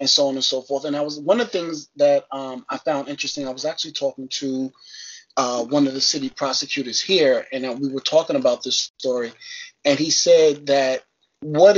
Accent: American